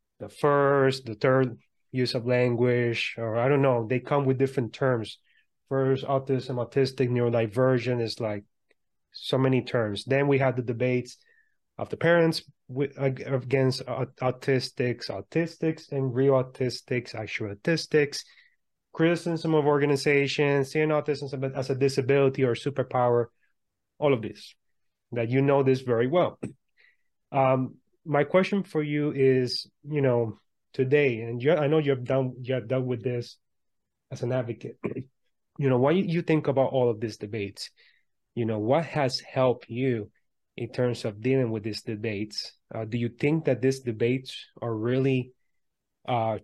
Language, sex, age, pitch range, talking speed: English, male, 30-49, 120-140 Hz, 150 wpm